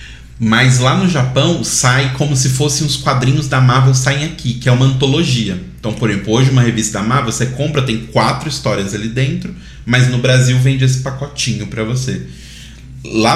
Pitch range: 100-135 Hz